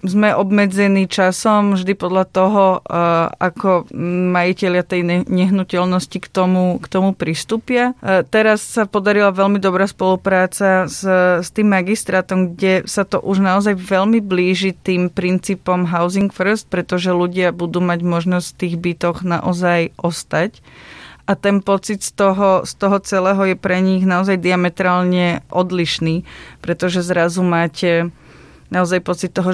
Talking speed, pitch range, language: 135 wpm, 180-195 Hz, Slovak